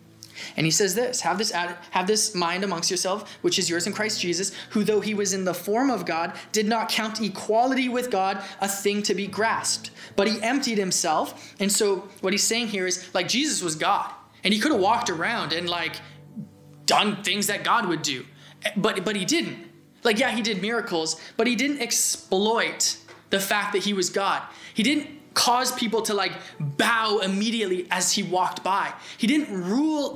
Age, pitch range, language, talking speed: 20-39, 175-220 Hz, English, 200 wpm